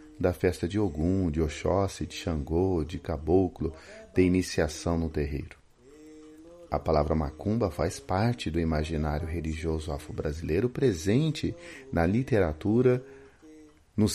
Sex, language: male, Portuguese